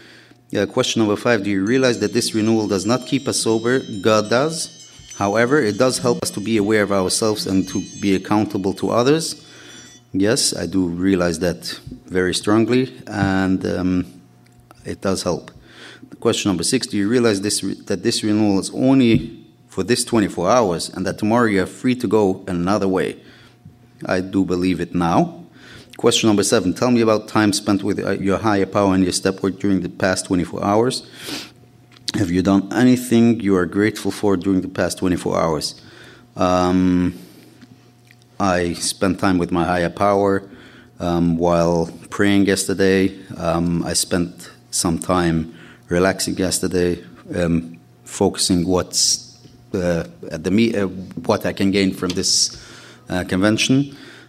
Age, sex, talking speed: 30-49, male, 160 wpm